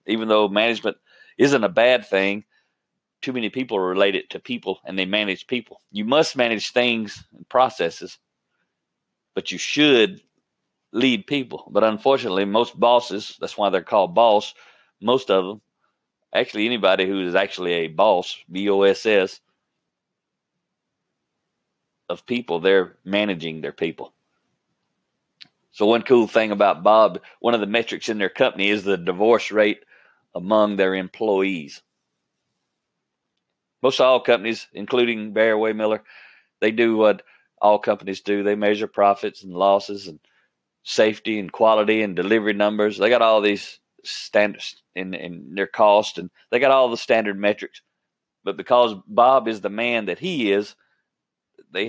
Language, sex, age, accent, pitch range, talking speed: English, male, 40-59, American, 95-115 Hz, 145 wpm